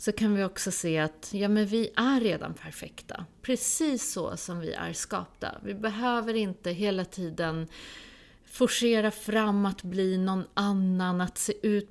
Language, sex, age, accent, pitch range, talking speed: Swedish, female, 30-49, native, 180-225 Hz, 150 wpm